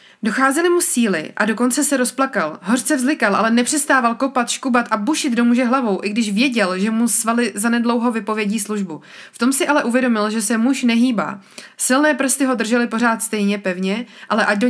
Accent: native